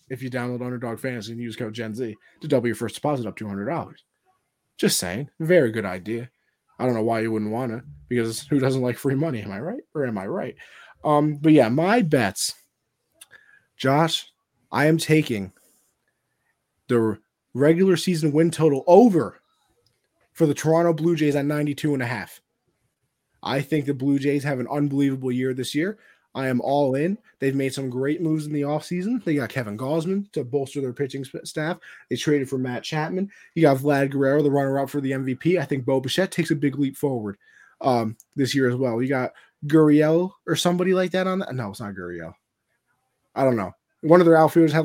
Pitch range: 125-160 Hz